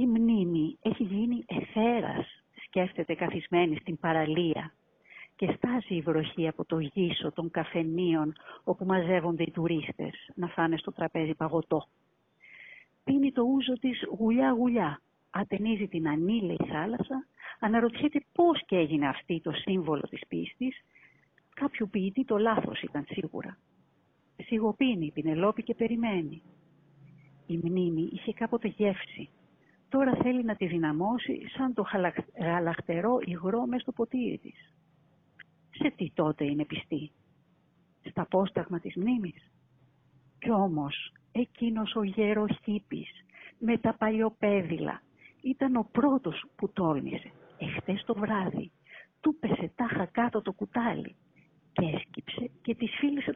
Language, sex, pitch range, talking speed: Greek, female, 165-235 Hz, 125 wpm